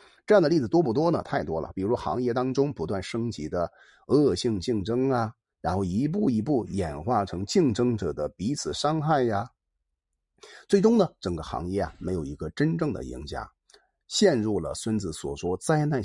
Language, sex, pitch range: Chinese, male, 85-140 Hz